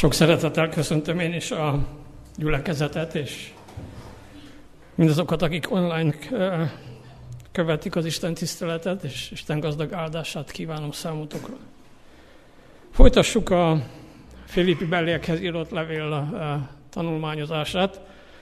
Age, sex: 50-69, male